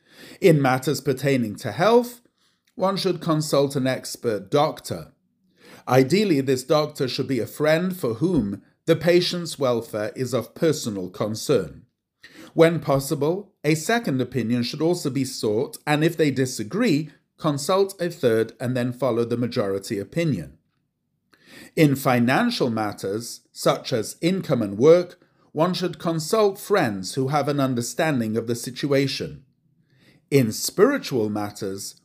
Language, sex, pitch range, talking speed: English, male, 125-170 Hz, 135 wpm